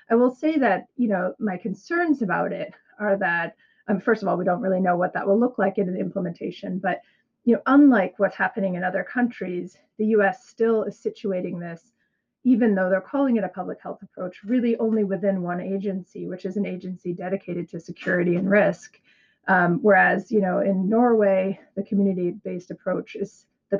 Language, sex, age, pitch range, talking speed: English, female, 30-49, 185-220 Hz, 195 wpm